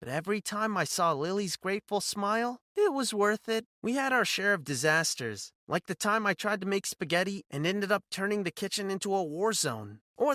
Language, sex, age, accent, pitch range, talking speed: English, male, 30-49, American, 165-230 Hz, 210 wpm